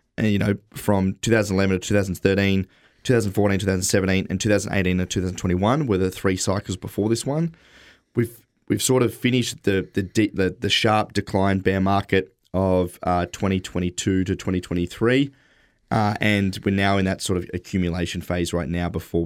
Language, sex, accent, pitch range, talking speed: English, male, Australian, 90-100 Hz, 190 wpm